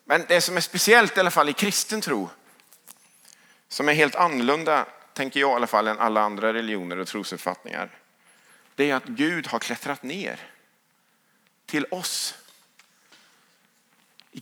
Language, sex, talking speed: English, male, 150 wpm